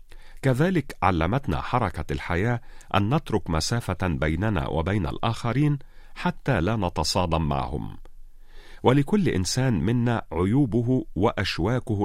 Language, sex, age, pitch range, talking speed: Arabic, male, 40-59, 90-130 Hz, 95 wpm